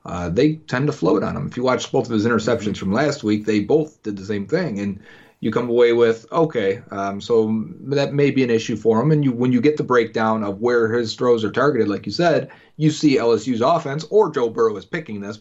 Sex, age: male, 30-49